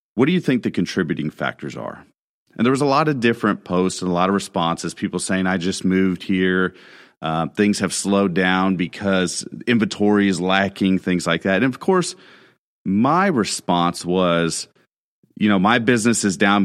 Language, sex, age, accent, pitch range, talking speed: English, male, 40-59, American, 85-110 Hz, 185 wpm